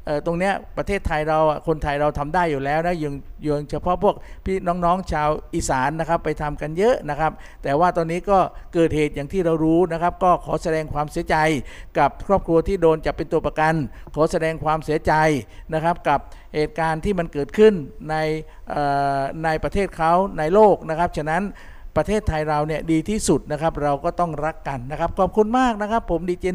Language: Thai